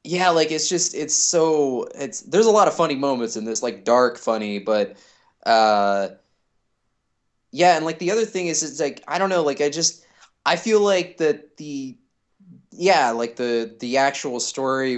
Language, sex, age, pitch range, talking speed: English, male, 20-39, 120-155 Hz, 185 wpm